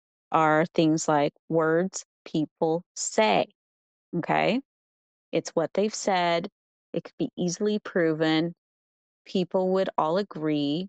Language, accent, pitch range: English, American, 160-195 Hz